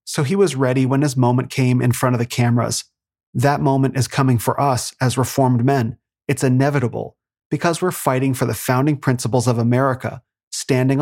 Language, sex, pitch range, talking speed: English, male, 125-140 Hz, 185 wpm